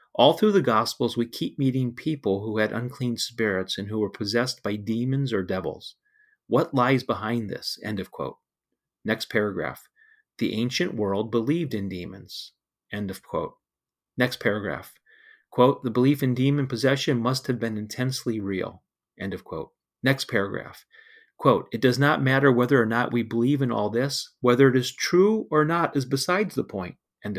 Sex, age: male, 30-49